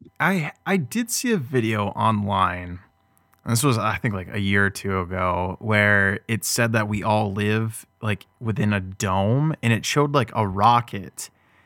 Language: English